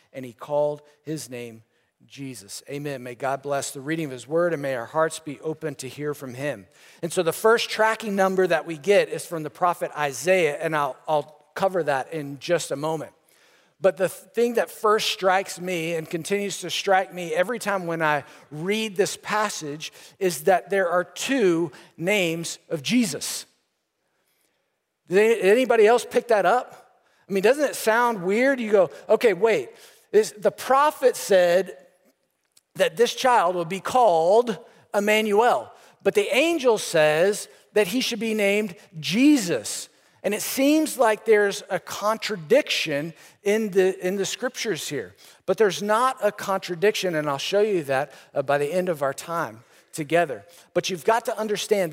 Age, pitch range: 50-69, 155-215 Hz